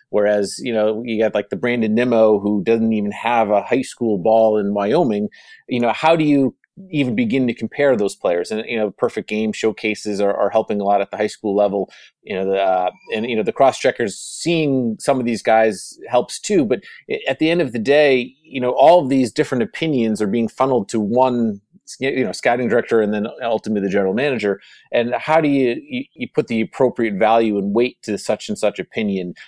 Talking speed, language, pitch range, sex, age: 220 wpm, English, 110-130 Hz, male, 30-49